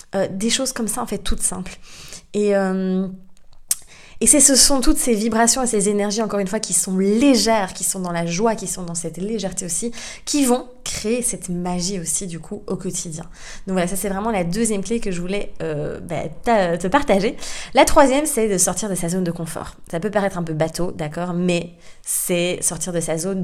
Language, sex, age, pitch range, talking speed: French, female, 20-39, 180-225 Hz, 220 wpm